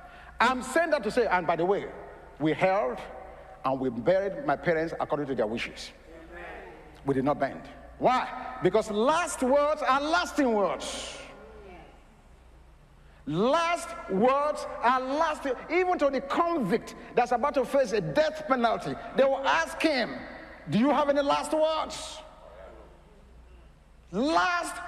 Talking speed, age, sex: 135 wpm, 50-69, male